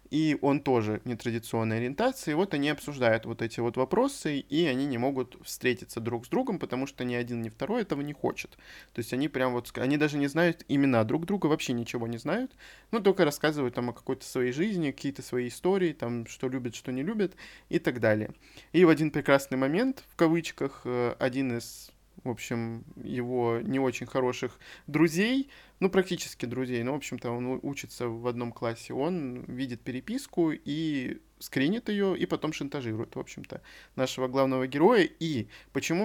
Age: 20-39